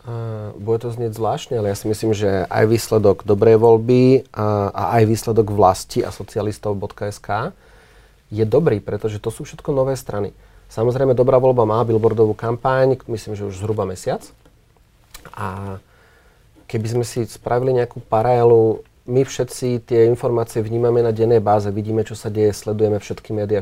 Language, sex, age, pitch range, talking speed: Slovak, male, 30-49, 105-120 Hz, 150 wpm